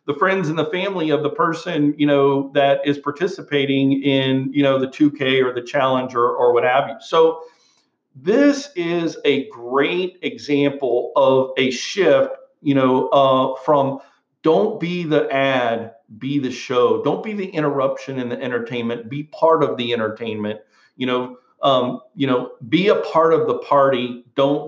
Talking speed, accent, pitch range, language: 170 wpm, American, 130-155 Hz, English